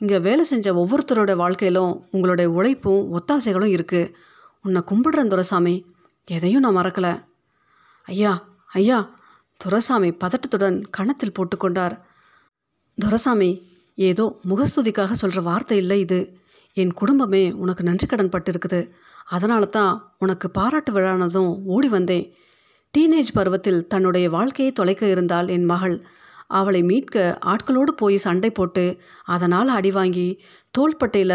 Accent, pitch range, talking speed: native, 180-215 Hz, 110 wpm